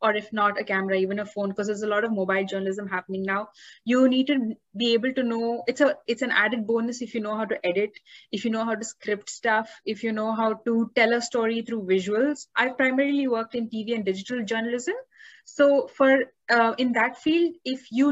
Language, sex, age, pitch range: English, female, 20-39, 215-265 Hz